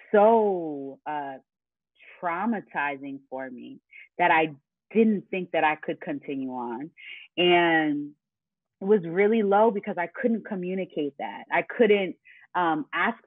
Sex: female